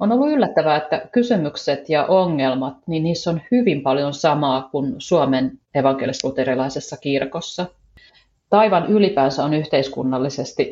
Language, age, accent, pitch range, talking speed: Finnish, 30-49, native, 135-170 Hz, 120 wpm